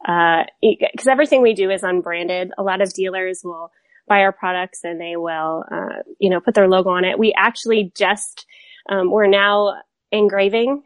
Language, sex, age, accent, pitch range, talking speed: English, female, 20-39, American, 185-215 Hz, 180 wpm